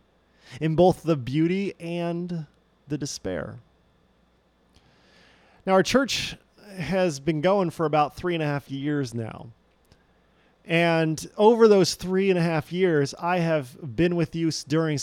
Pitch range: 130-170 Hz